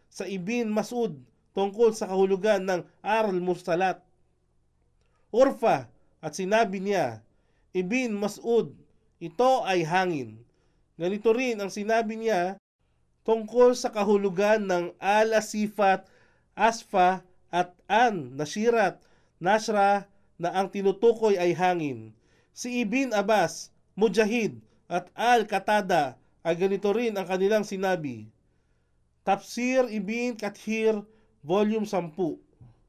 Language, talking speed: Filipino, 95 wpm